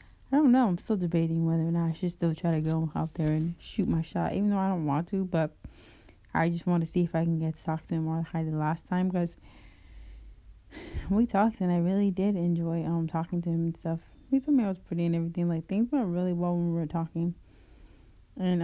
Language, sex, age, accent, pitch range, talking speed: English, female, 20-39, American, 155-180 Hz, 250 wpm